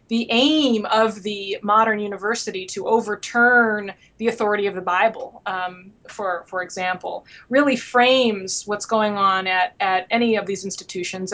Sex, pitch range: female, 195-230 Hz